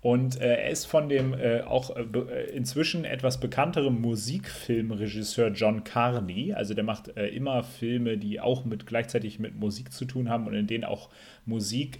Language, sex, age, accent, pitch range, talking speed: German, male, 30-49, German, 110-130 Hz, 175 wpm